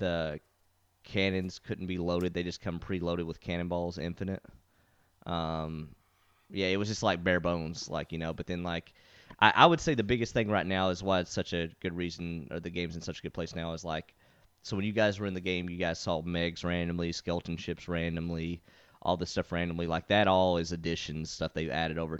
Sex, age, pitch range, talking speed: male, 30-49, 85-95 Hz, 220 wpm